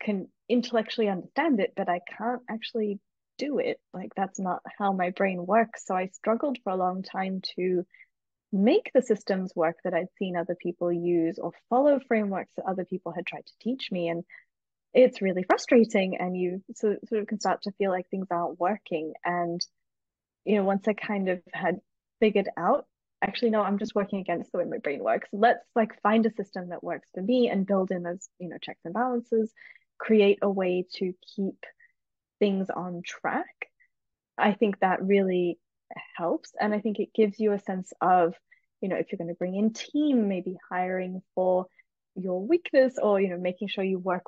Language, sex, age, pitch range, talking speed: English, female, 20-39, 180-220 Hz, 195 wpm